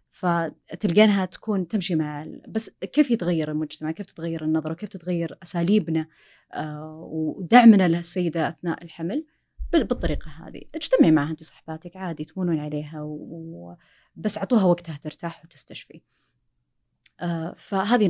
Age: 30-49